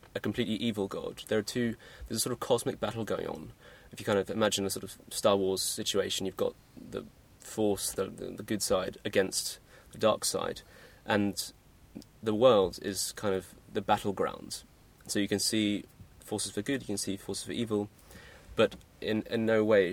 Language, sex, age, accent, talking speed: English, male, 20-39, British, 195 wpm